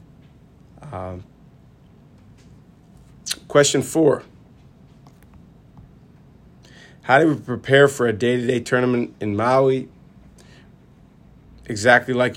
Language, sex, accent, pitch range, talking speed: Italian, male, American, 105-125 Hz, 75 wpm